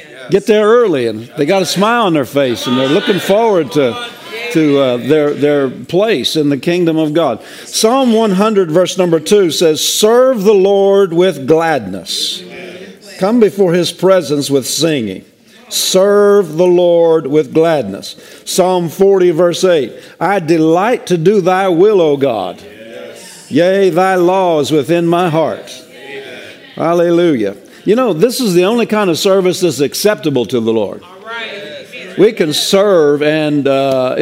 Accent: American